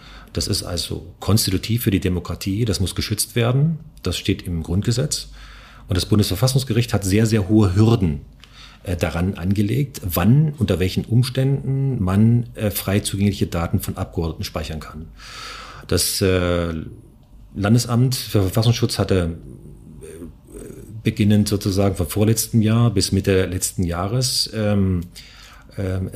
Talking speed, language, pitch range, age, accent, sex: 130 wpm, German, 90-115 Hz, 40-59, German, male